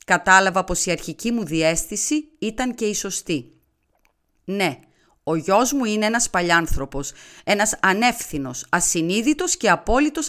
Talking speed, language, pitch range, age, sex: 130 wpm, Greek, 155-235 Hz, 30-49, female